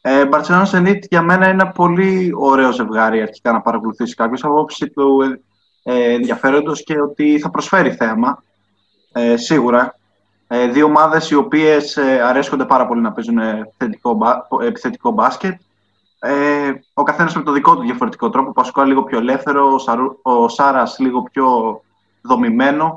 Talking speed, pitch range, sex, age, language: 155 wpm, 115-150 Hz, male, 20-39, Greek